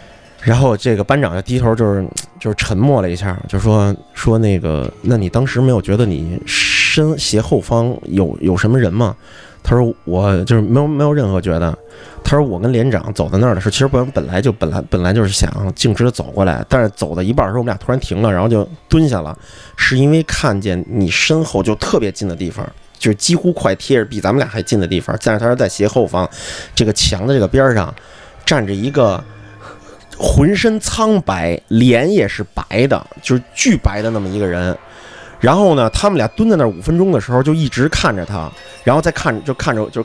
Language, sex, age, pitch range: Chinese, male, 20-39, 100-140 Hz